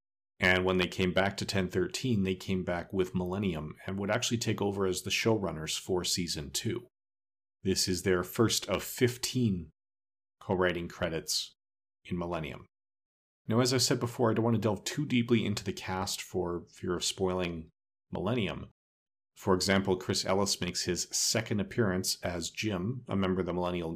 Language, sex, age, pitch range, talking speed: English, male, 40-59, 90-105 Hz, 170 wpm